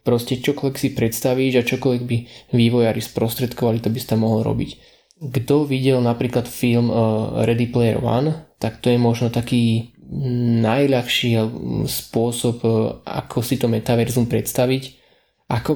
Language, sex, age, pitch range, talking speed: Slovak, male, 20-39, 115-125 Hz, 135 wpm